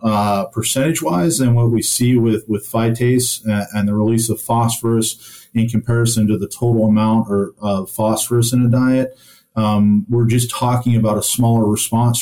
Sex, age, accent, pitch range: male, 40-59, American, 105-120 Hz